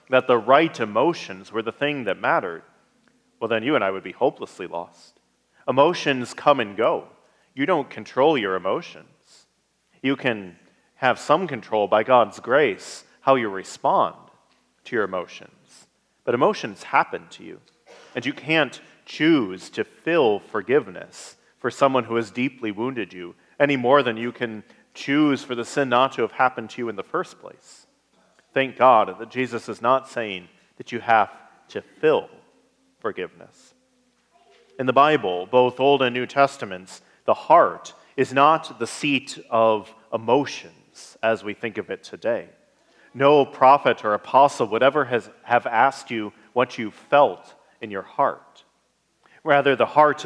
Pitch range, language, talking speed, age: 110-140 Hz, English, 160 wpm, 40-59